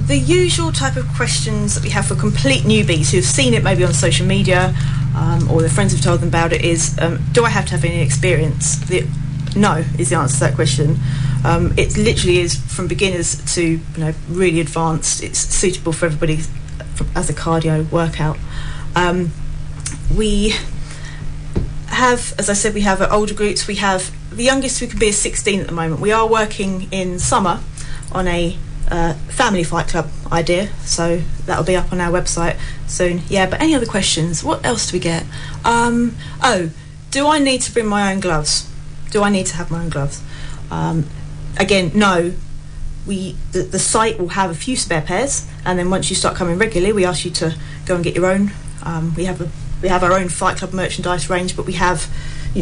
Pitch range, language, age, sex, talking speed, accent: 145-185 Hz, English, 30-49, female, 205 wpm, British